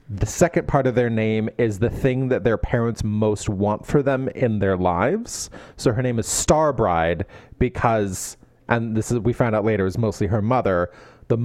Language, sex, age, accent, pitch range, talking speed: English, male, 30-49, American, 110-150 Hz, 200 wpm